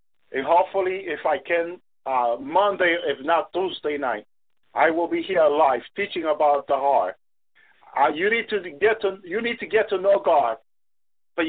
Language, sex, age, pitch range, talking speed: English, male, 50-69, 175-210 Hz, 180 wpm